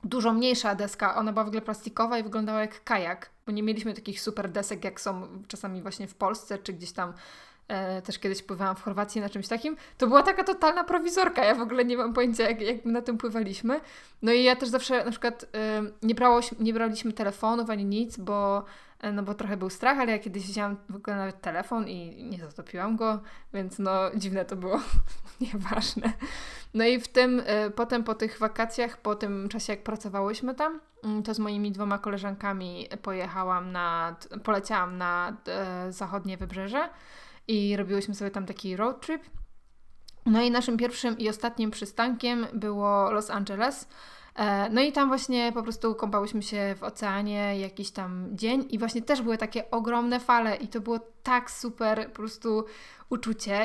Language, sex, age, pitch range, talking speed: Polish, female, 20-39, 200-235 Hz, 180 wpm